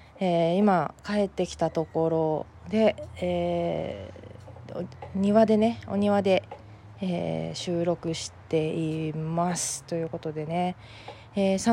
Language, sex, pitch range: Japanese, female, 160-200 Hz